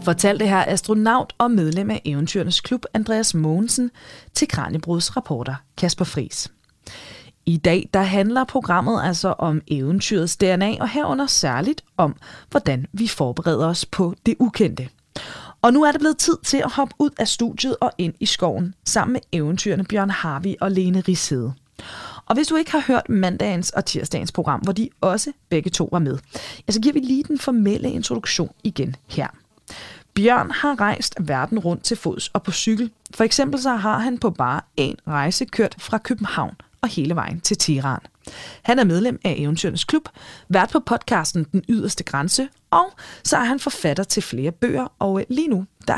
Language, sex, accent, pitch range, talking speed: Danish, female, native, 165-240 Hz, 175 wpm